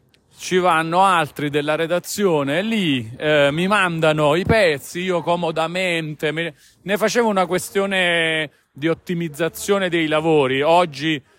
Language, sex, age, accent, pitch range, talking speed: Italian, male, 40-59, native, 135-170 Hz, 125 wpm